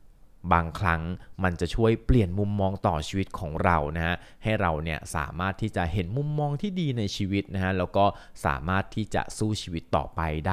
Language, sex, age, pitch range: Thai, male, 20-39, 85-110 Hz